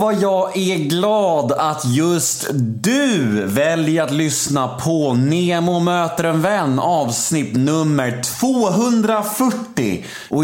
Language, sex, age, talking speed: Swedish, male, 30-49, 105 wpm